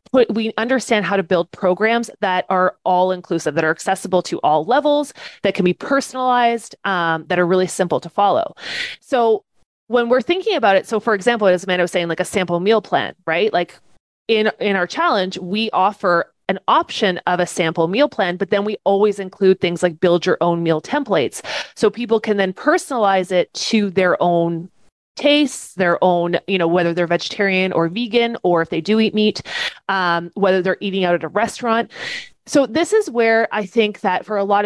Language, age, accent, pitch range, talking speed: English, 30-49, American, 180-225 Hz, 200 wpm